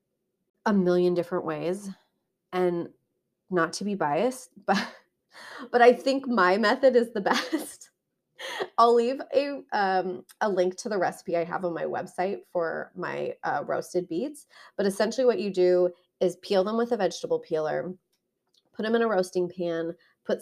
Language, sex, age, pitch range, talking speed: English, female, 30-49, 170-225 Hz, 165 wpm